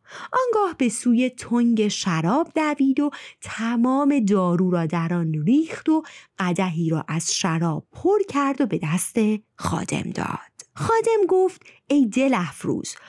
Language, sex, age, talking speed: Persian, female, 30-49, 140 wpm